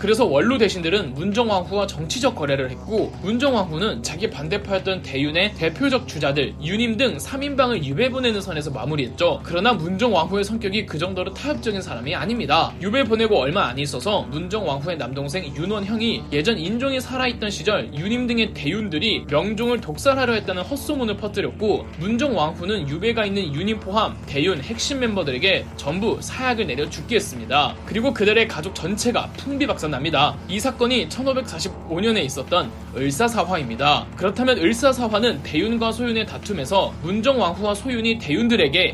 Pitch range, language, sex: 185-255 Hz, Korean, male